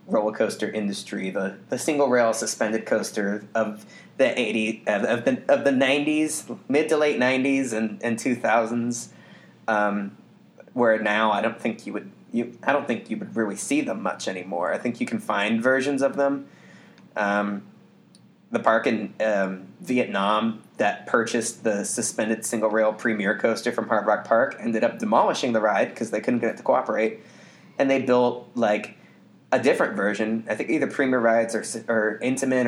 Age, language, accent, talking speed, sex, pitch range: 20-39, English, American, 180 wpm, male, 110-135 Hz